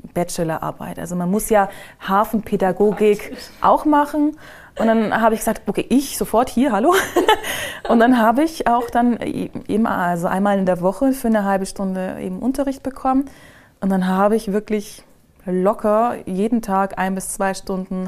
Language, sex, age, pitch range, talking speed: German, female, 20-39, 185-225 Hz, 165 wpm